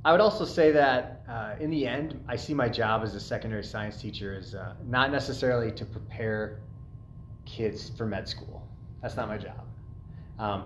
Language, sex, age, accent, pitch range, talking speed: English, male, 30-49, American, 105-135 Hz, 185 wpm